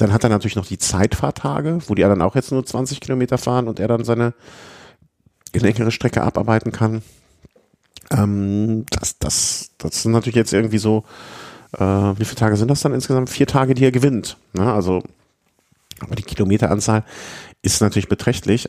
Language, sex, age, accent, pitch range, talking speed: German, male, 50-69, German, 95-115 Hz, 175 wpm